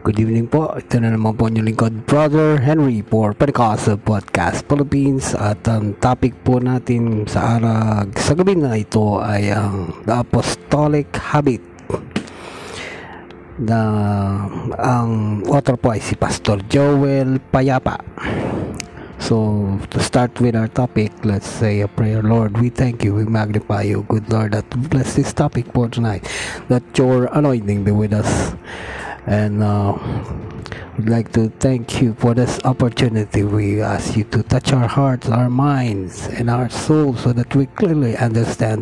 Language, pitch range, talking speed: Filipino, 105-130 Hz, 140 wpm